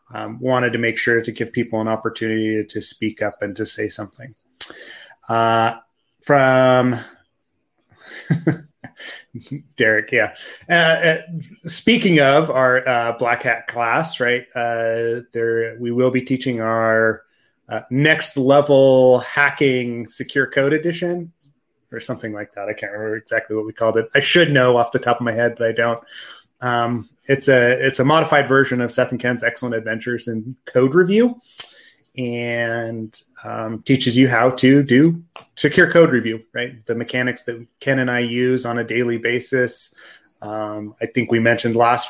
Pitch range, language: 115-135 Hz, English